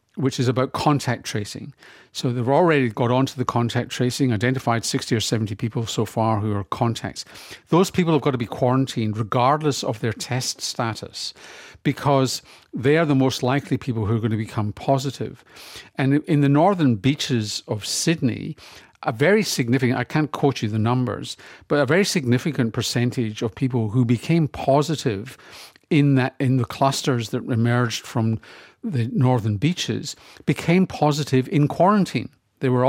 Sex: male